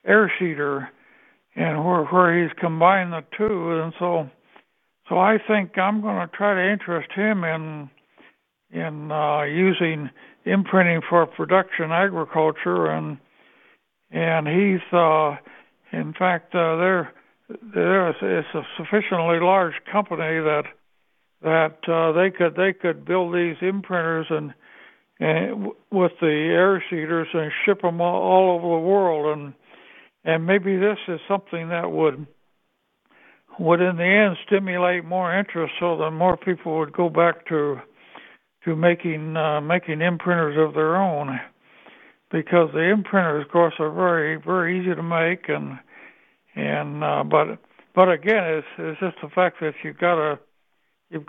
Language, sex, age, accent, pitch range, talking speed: English, male, 60-79, American, 155-185 Hz, 145 wpm